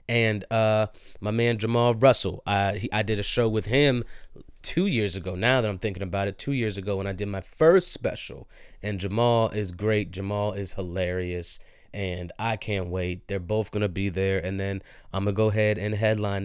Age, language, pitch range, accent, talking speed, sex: 30-49, English, 100-130 Hz, American, 210 wpm, male